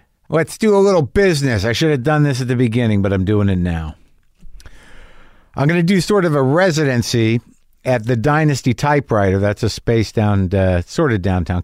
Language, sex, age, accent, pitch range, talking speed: English, male, 50-69, American, 115-140 Hz, 195 wpm